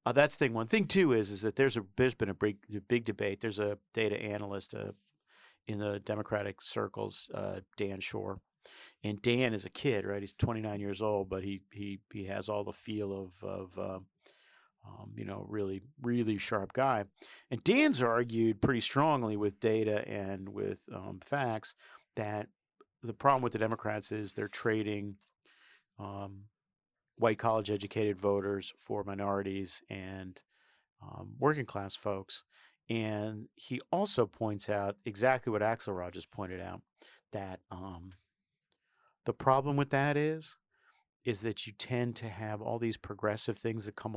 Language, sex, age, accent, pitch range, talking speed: English, male, 40-59, American, 100-120 Hz, 160 wpm